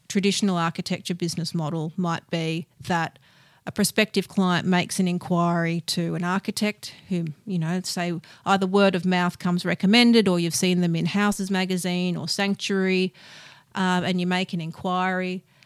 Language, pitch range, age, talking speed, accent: English, 170-200 Hz, 40-59, 155 wpm, Australian